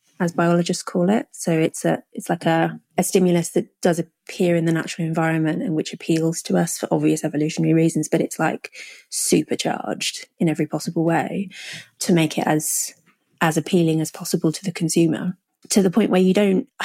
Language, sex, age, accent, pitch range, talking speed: English, female, 30-49, British, 165-190 Hz, 190 wpm